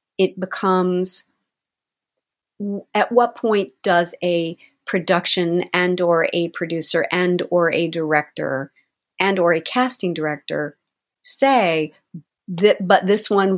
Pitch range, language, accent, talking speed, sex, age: 165-195 Hz, English, American, 100 wpm, female, 50-69